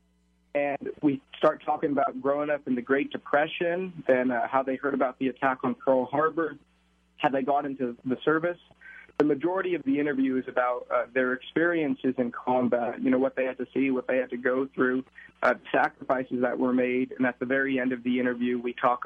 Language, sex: English, male